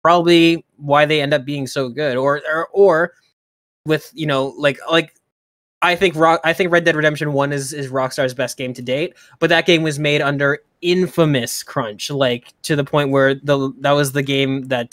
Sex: male